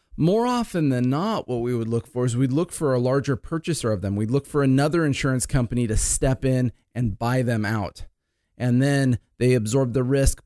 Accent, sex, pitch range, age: American, male, 120-150 Hz, 30-49